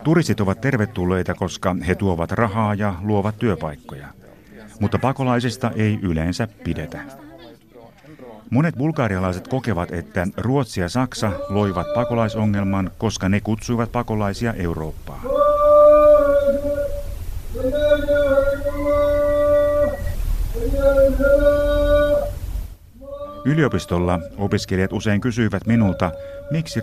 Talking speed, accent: 80 wpm, native